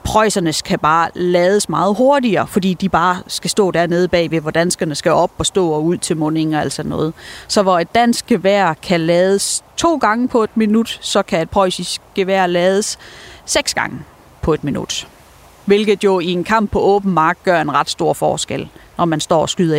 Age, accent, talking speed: 30-49, native, 205 wpm